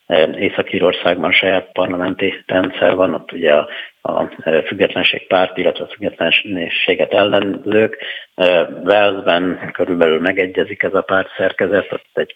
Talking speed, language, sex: 115 wpm, Hungarian, male